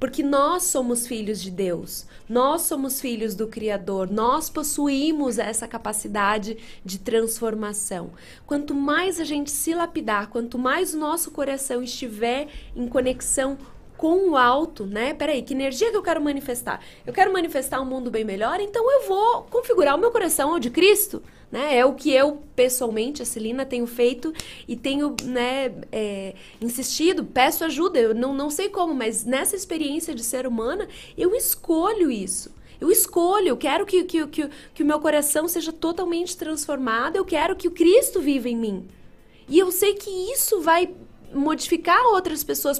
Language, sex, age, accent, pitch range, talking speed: Portuguese, female, 20-39, Brazilian, 245-345 Hz, 165 wpm